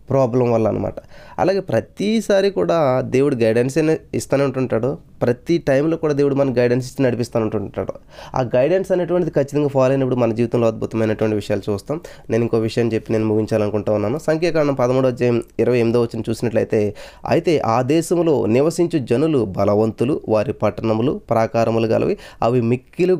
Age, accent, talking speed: 20-39, native, 145 wpm